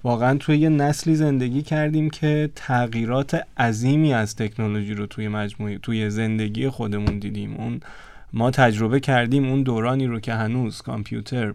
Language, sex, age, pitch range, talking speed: Persian, male, 20-39, 110-135 Hz, 145 wpm